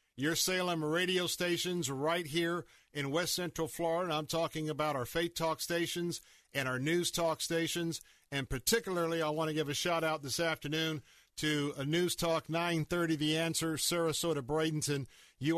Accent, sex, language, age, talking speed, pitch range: American, male, English, 50-69, 160 wpm, 145-175 Hz